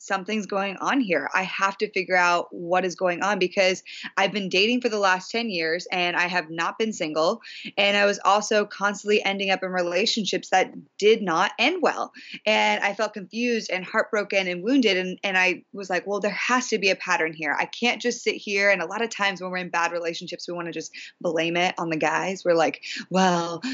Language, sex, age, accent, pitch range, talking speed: English, female, 20-39, American, 180-215 Hz, 230 wpm